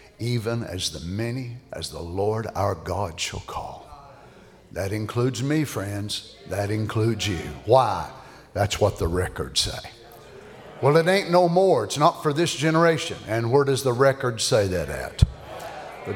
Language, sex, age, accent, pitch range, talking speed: English, male, 60-79, American, 100-150 Hz, 160 wpm